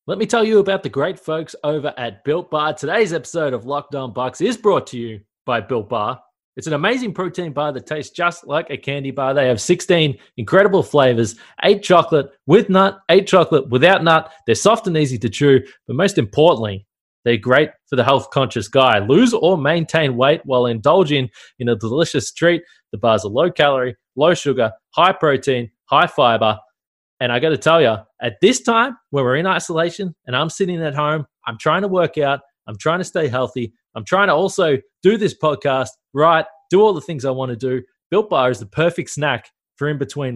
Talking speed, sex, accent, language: 200 wpm, male, Australian, English